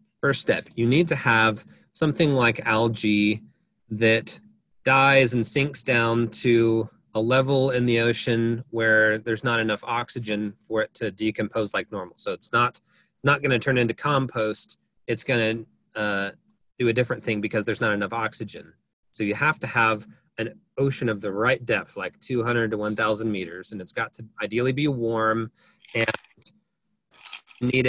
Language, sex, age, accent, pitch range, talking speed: English, male, 30-49, American, 110-130 Hz, 170 wpm